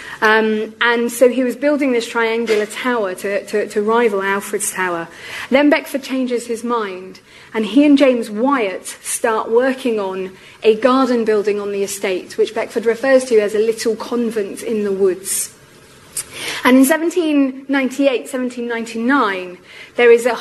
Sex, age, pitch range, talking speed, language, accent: female, 30-49, 210-255 Hz, 150 wpm, English, British